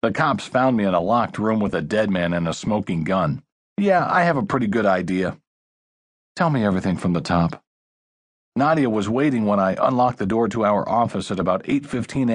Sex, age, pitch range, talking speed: male, 50-69, 100-145 Hz, 210 wpm